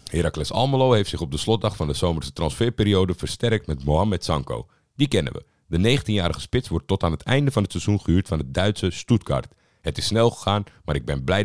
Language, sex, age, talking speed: Dutch, male, 50-69, 220 wpm